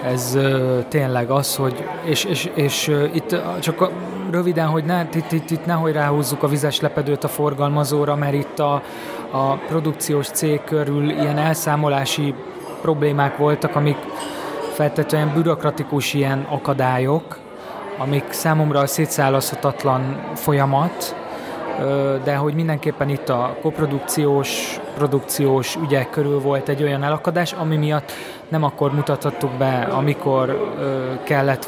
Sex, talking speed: male, 125 wpm